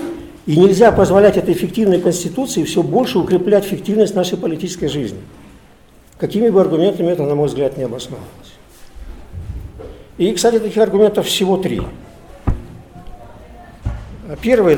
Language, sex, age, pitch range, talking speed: Russian, male, 50-69, 155-195 Hz, 120 wpm